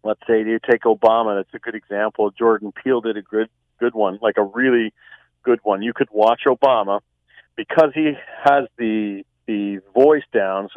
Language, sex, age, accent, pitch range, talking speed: English, male, 40-59, American, 105-130 Hz, 185 wpm